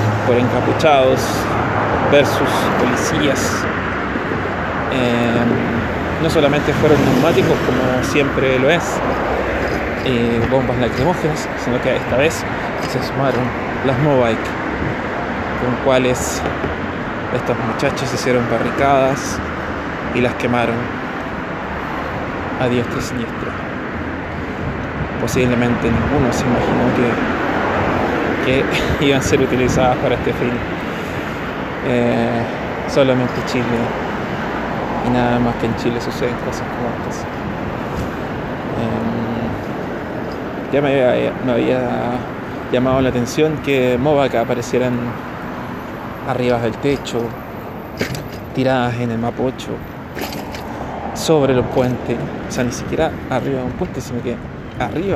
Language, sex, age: Spanish, male, 20-39